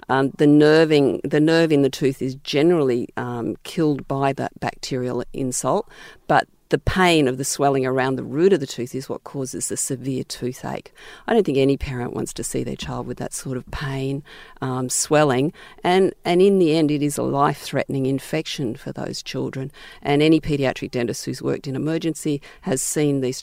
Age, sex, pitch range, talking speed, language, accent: 50-69, female, 135-165 Hz, 190 wpm, English, Australian